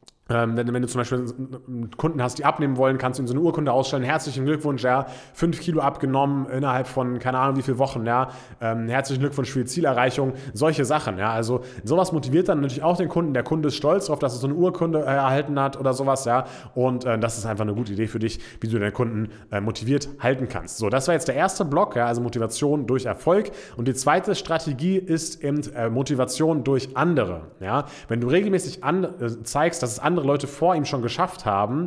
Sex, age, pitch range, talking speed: male, 20-39, 120-145 Hz, 205 wpm